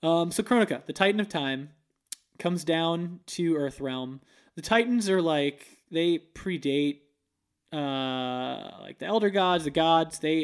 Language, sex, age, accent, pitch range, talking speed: English, male, 20-39, American, 145-180 Hz, 150 wpm